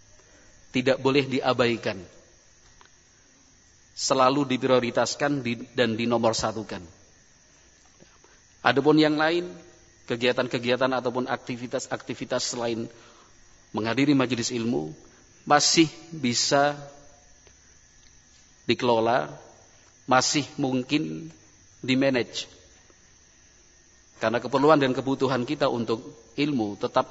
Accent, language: native, Indonesian